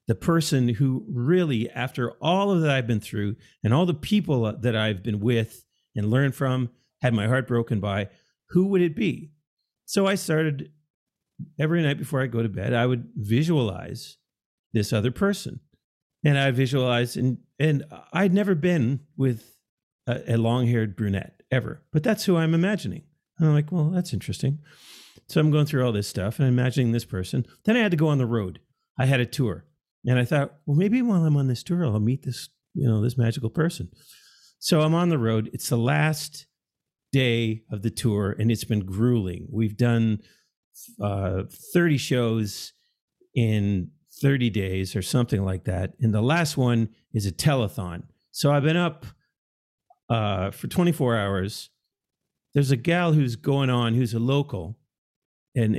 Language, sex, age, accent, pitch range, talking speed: English, male, 40-59, American, 115-155 Hz, 180 wpm